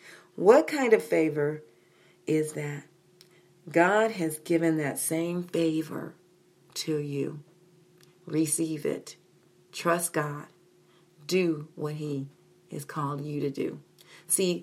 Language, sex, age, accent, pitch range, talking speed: English, female, 40-59, American, 160-205 Hz, 110 wpm